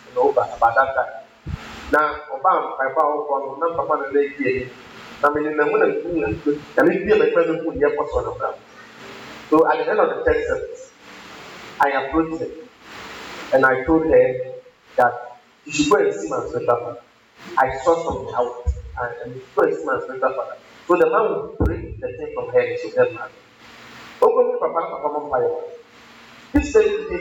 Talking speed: 115 wpm